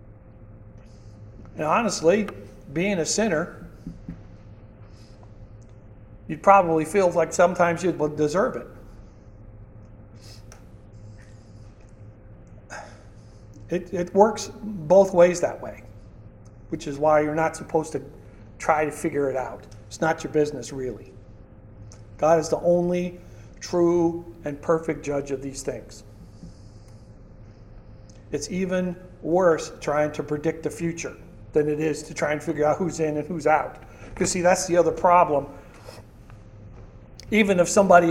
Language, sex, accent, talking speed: English, male, American, 125 wpm